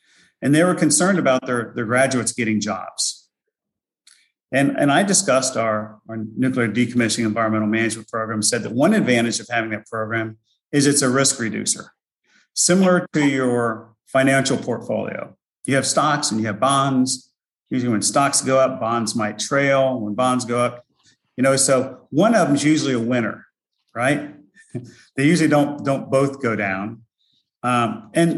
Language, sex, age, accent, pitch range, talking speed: English, male, 40-59, American, 110-135 Hz, 165 wpm